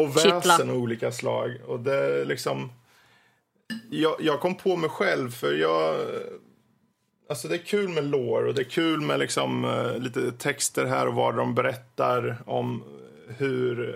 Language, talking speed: Swedish, 170 wpm